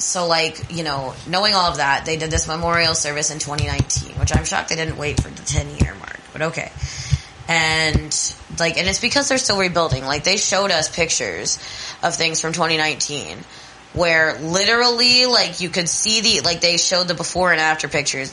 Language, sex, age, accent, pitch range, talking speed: English, female, 20-39, American, 145-170 Hz, 195 wpm